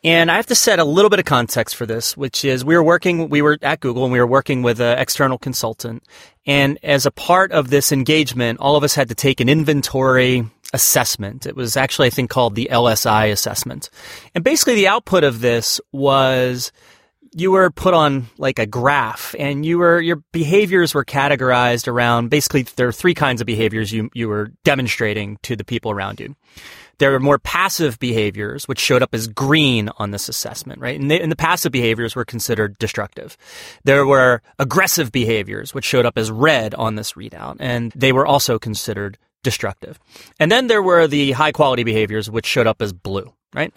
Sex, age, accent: male, 30-49, American